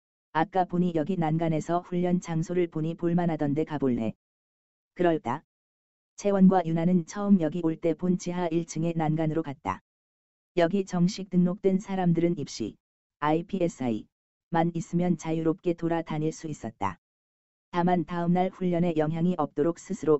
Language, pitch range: Korean, 155-180 Hz